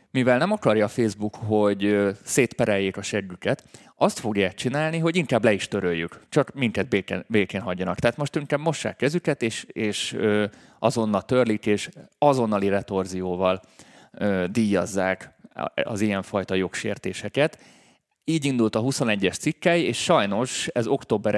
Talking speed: 130 wpm